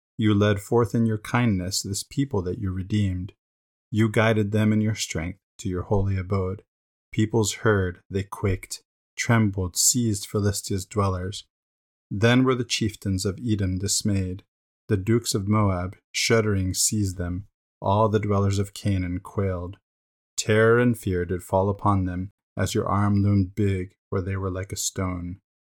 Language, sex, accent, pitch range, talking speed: English, male, American, 95-110 Hz, 155 wpm